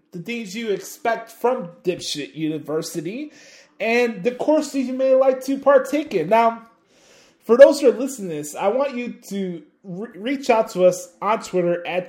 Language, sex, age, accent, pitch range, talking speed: English, male, 20-39, American, 175-250 Hz, 175 wpm